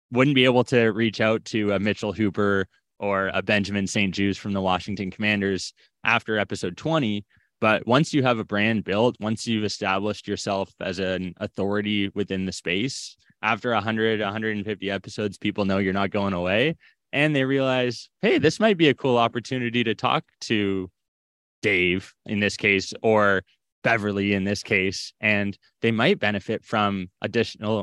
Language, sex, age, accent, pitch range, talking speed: English, male, 20-39, American, 100-120 Hz, 165 wpm